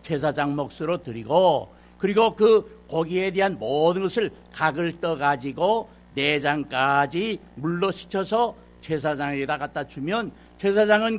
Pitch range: 145-205 Hz